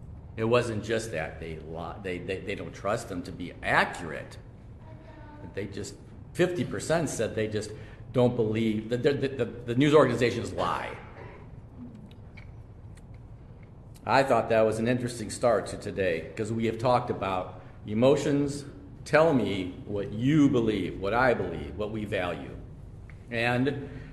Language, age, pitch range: English, 50-69, 105-135 Hz